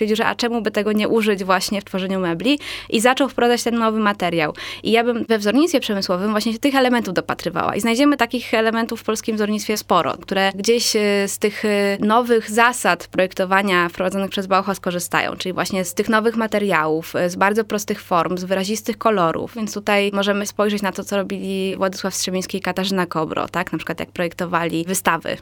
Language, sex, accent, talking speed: Polish, female, native, 185 wpm